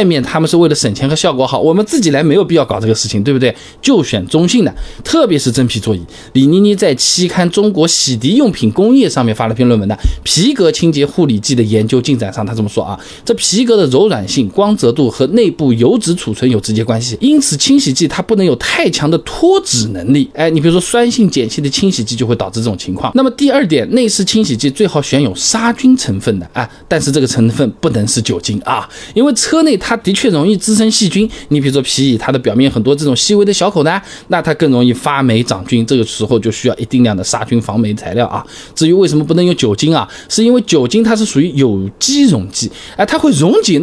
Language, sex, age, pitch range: Chinese, male, 20-39, 120-195 Hz